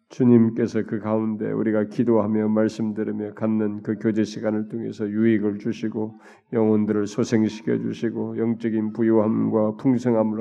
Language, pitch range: Korean, 110-115 Hz